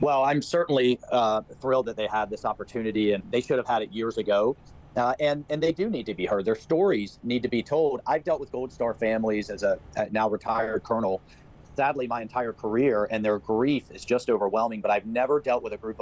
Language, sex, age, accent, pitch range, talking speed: English, male, 40-59, American, 105-125 Hz, 225 wpm